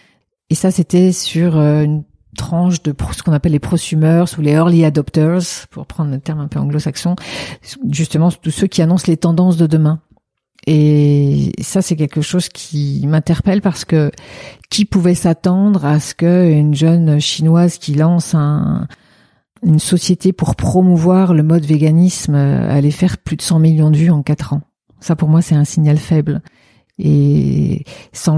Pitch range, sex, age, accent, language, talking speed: 150-180 Hz, female, 50-69, French, French, 165 wpm